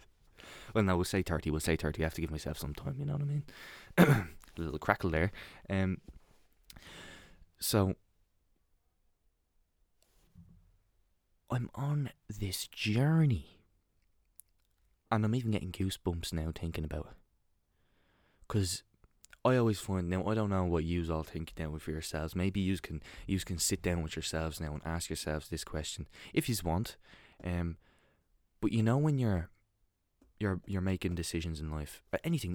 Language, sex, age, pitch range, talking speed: English, male, 20-39, 80-110 Hz, 160 wpm